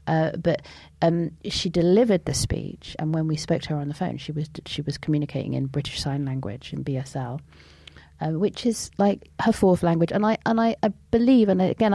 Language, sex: English, female